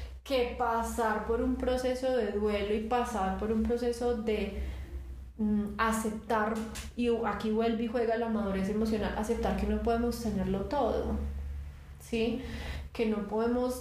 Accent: Colombian